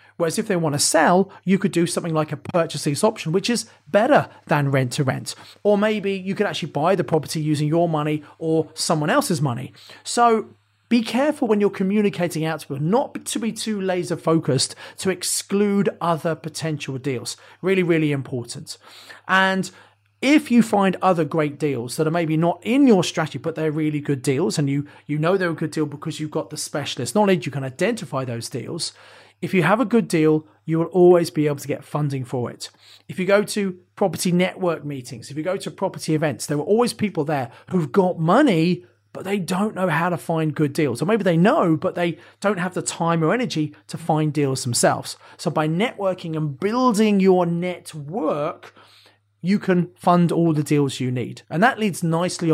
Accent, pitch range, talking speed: British, 150-190 Hz, 205 wpm